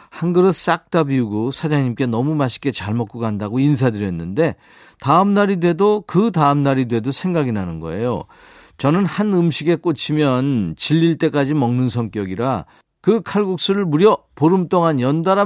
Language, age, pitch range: Korean, 40-59, 120-170 Hz